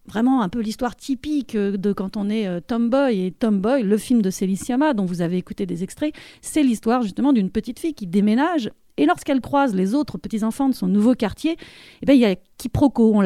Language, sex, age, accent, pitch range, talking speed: French, female, 40-59, French, 210-275 Hz, 215 wpm